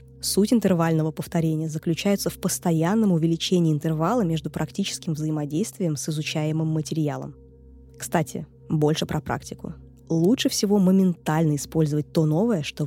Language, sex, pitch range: Russian, female, 155-185 Hz